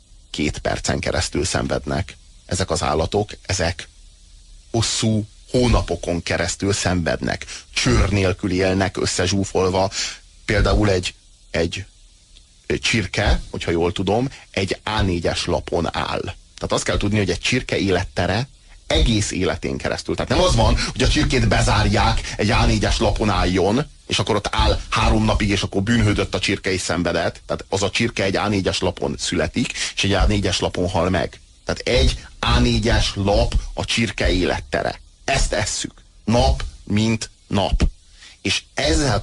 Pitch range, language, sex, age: 85-105 Hz, Hungarian, male, 30-49